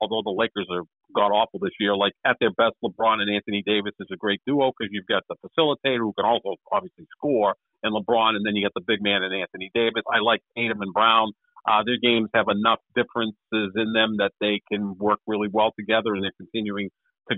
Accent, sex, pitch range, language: American, male, 105-130 Hz, English